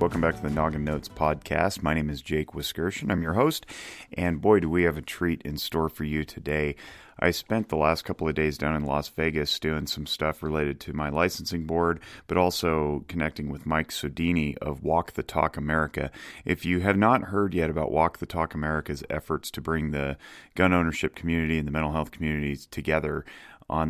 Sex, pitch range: male, 75-85 Hz